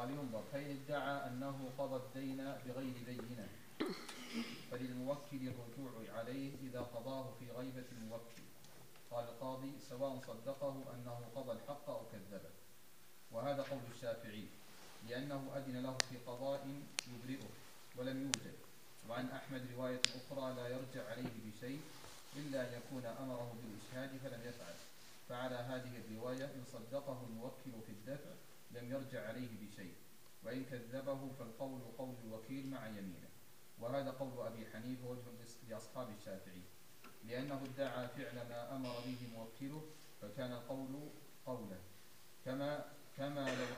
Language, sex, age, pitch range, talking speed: Arabic, male, 40-59, 120-135 Hz, 125 wpm